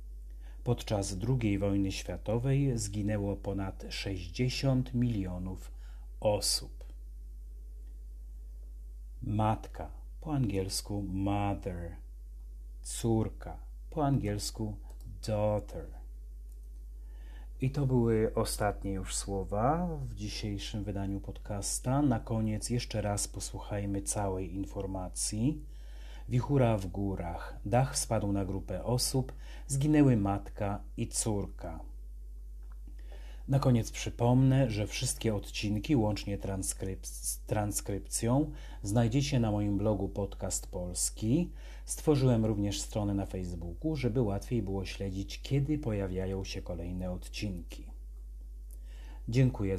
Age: 40-59